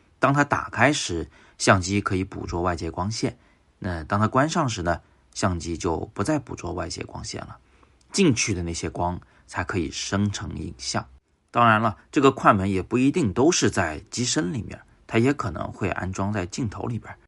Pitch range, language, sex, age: 90-125 Hz, Chinese, male, 30-49